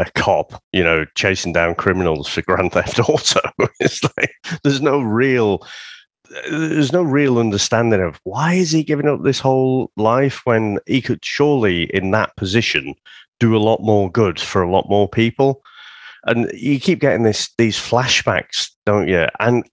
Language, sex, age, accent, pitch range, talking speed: English, male, 30-49, British, 95-145 Hz, 170 wpm